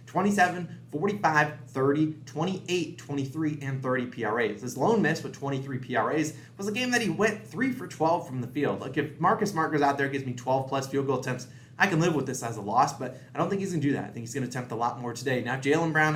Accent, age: American, 20-39